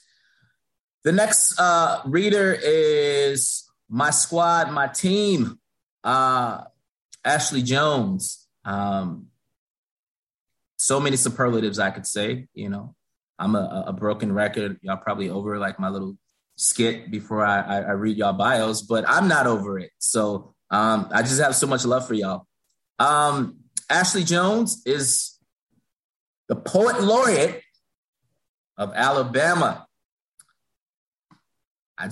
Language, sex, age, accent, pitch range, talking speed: English, male, 20-39, American, 110-170 Hz, 120 wpm